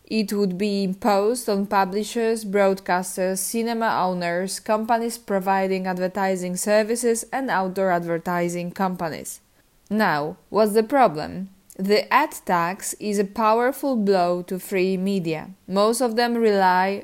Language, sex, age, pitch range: Polish, female, 20-39, 185-220 Hz